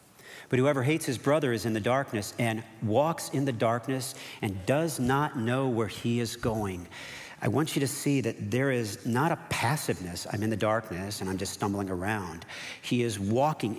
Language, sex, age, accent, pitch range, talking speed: English, male, 50-69, American, 110-135 Hz, 195 wpm